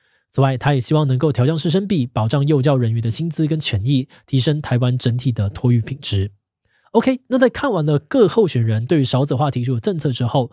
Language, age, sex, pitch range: Chinese, 20-39, male, 120-160 Hz